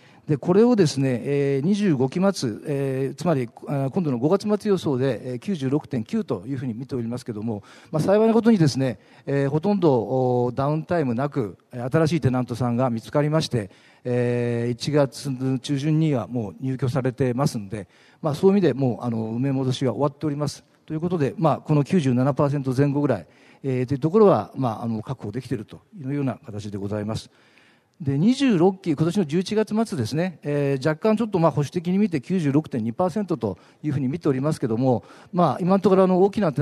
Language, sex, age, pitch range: Japanese, male, 50-69, 125-160 Hz